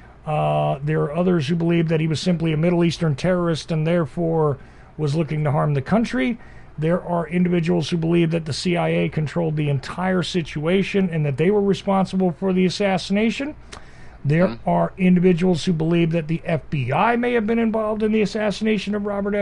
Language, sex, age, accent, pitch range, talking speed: English, male, 40-59, American, 150-185 Hz, 180 wpm